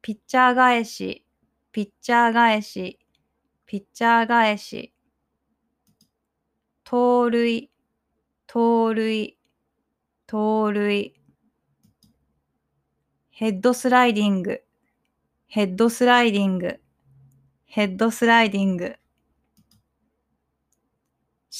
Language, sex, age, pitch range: Japanese, female, 20-39, 210-245 Hz